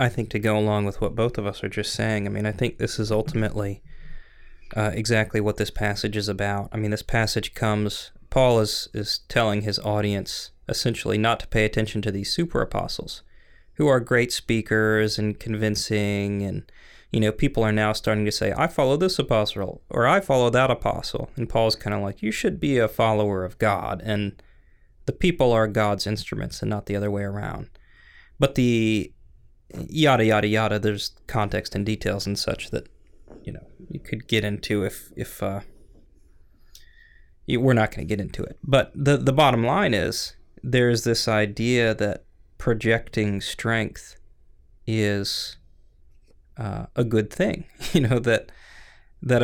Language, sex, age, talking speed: English, male, 20-39, 175 wpm